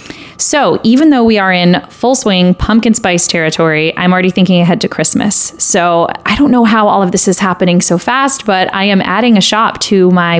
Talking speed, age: 215 wpm, 20-39